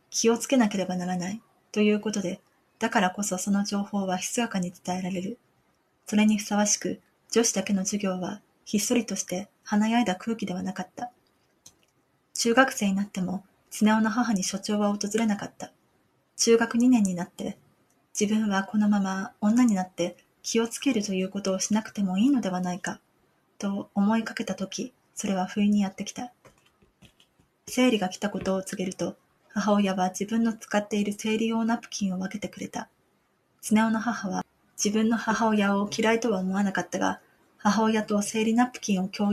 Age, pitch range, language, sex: 20-39, 190-225 Hz, Japanese, female